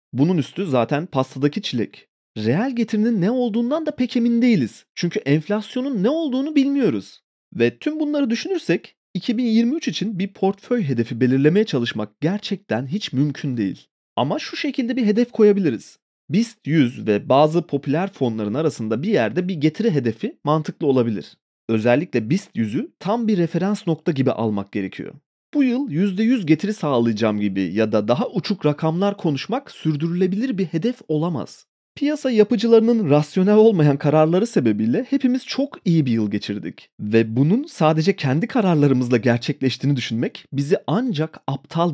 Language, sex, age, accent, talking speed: Turkish, male, 30-49, native, 145 wpm